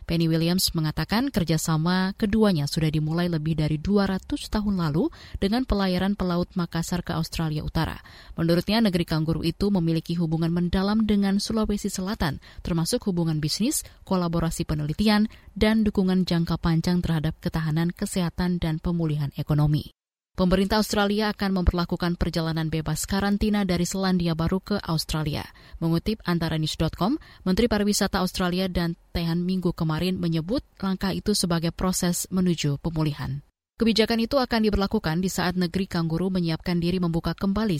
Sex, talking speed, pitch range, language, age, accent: female, 135 wpm, 165-195 Hz, Indonesian, 20-39, native